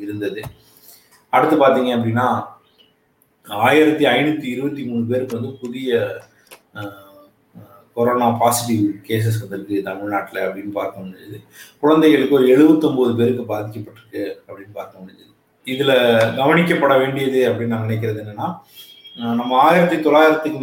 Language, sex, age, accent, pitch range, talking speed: Tamil, male, 30-49, native, 110-145 Hz, 85 wpm